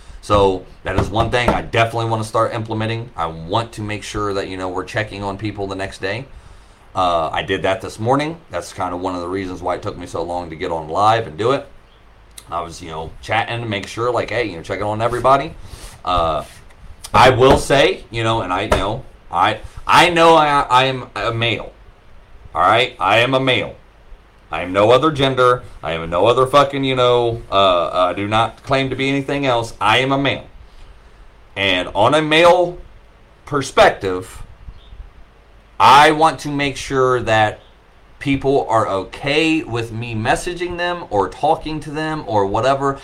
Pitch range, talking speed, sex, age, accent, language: 100-135 Hz, 195 wpm, male, 30-49, American, English